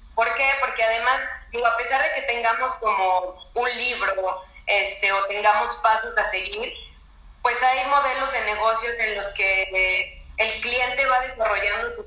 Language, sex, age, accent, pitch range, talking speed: Spanish, female, 30-49, Mexican, 200-235 Hz, 160 wpm